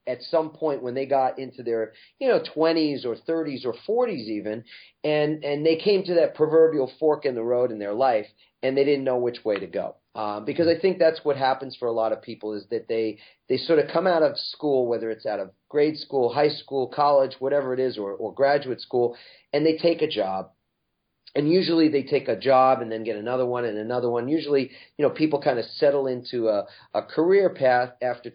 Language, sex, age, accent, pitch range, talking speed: English, male, 40-59, American, 120-145 Hz, 230 wpm